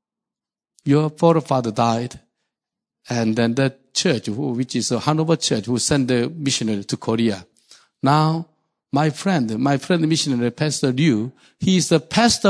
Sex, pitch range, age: male, 145-215 Hz, 50-69